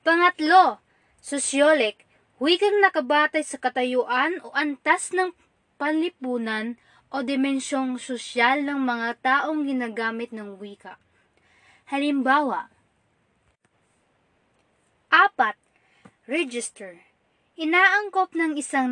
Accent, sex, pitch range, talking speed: native, female, 245-330 Hz, 80 wpm